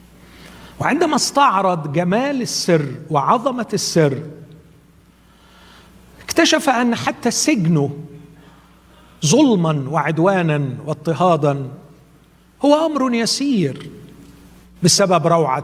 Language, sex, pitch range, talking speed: Arabic, male, 150-195 Hz, 70 wpm